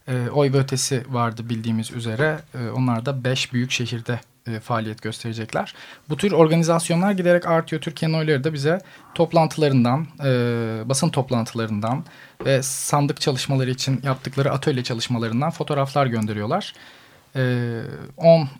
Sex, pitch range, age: male, 120-150 Hz, 40-59